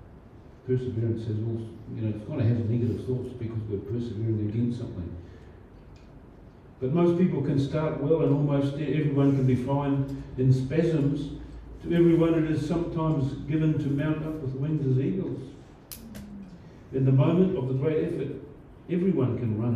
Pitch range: 115-145 Hz